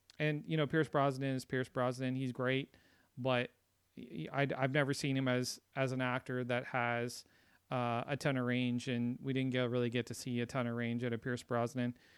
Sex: male